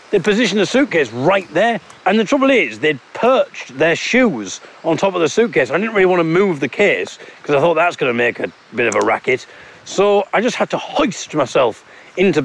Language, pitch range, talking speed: English, 140-210 Hz, 225 wpm